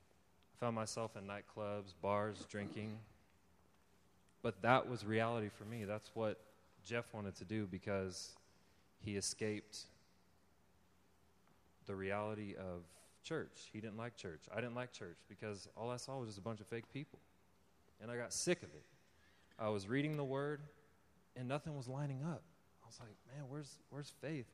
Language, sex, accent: English, male, American